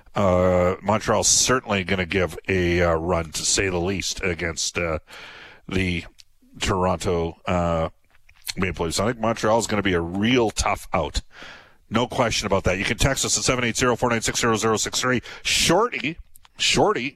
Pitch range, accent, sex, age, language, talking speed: 100-135 Hz, American, male, 50-69, English, 145 wpm